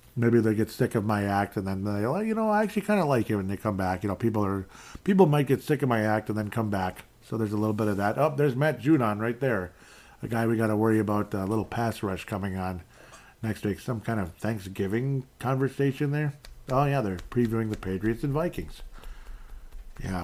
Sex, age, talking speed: male, 40-59, 235 wpm